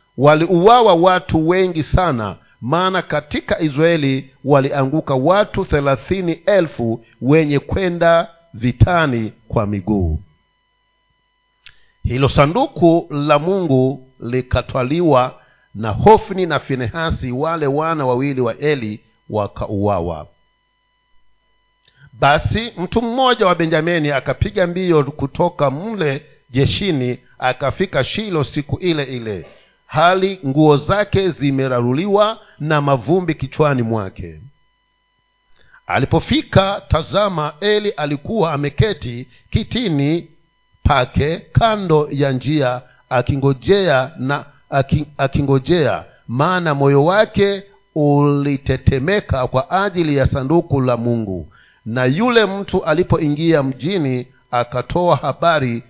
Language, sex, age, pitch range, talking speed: Swahili, male, 50-69, 125-175 Hz, 90 wpm